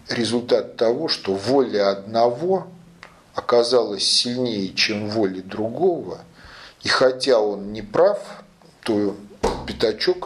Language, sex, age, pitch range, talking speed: Russian, male, 40-59, 100-130 Hz, 100 wpm